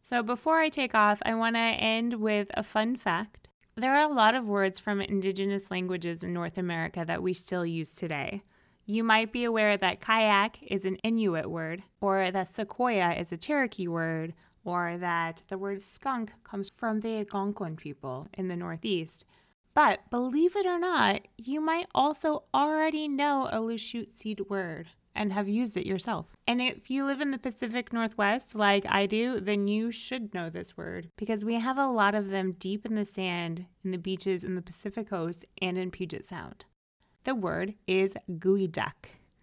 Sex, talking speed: female, 185 wpm